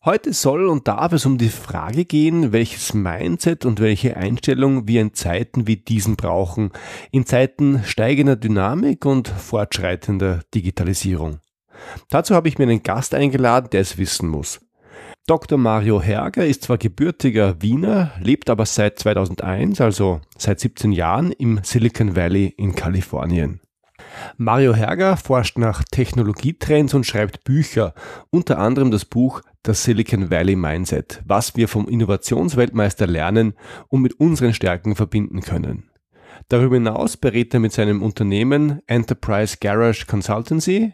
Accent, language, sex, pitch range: German, German, male, 100-130 Hz